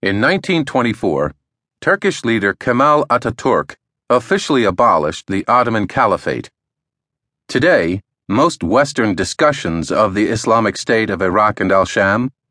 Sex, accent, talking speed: male, American, 110 wpm